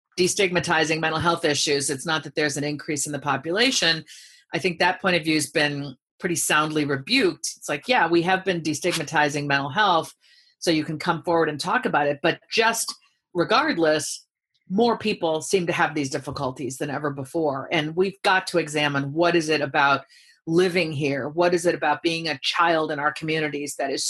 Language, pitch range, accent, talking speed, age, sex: English, 150-180 Hz, American, 195 wpm, 40-59, female